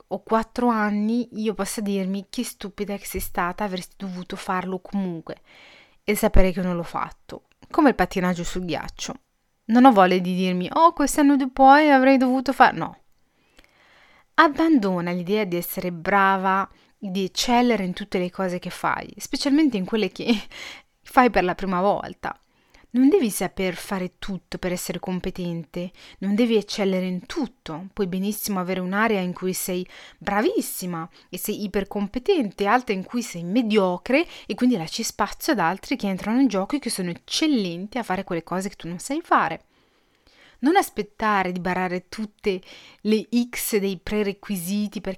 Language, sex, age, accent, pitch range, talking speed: Italian, female, 30-49, native, 185-235 Hz, 165 wpm